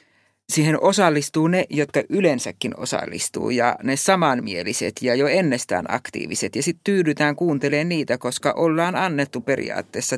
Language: Finnish